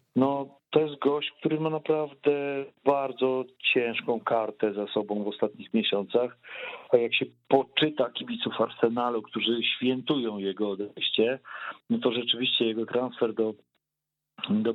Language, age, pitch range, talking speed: Polish, 40-59, 105-130 Hz, 130 wpm